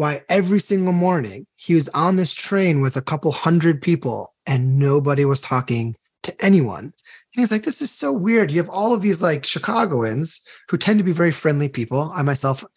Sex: male